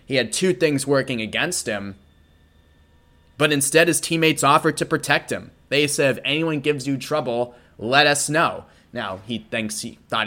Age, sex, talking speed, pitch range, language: 20-39, male, 175 wpm, 110-150 Hz, English